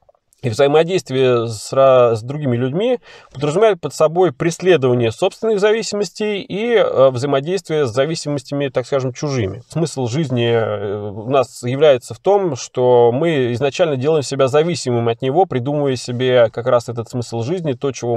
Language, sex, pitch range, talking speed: Russian, male, 125-180 Hz, 140 wpm